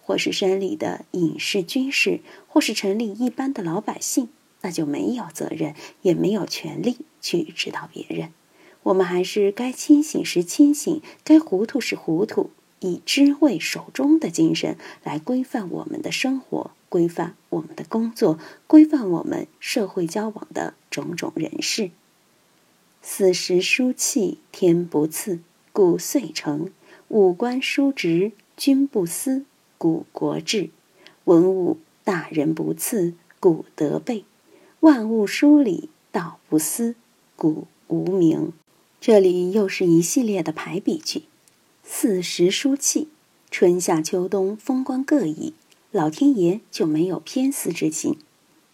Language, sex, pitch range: Chinese, female, 180-295 Hz